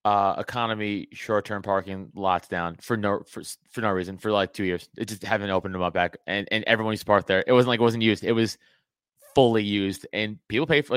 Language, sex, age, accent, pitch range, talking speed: English, male, 30-49, American, 100-125 Hz, 240 wpm